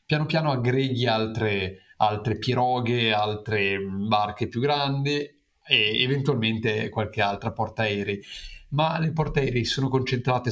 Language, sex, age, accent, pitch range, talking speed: Italian, male, 30-49, native, 110-130 Hz, 115 wpm